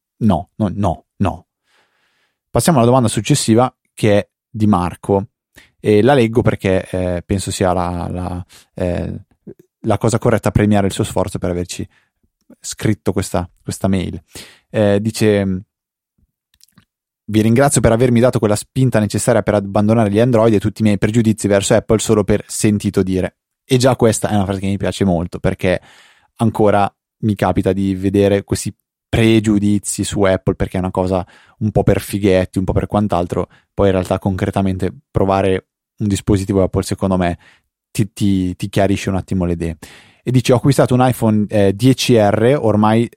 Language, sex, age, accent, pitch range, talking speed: Italian, male, 20-39, native, 95-115 Hz, 165 wpm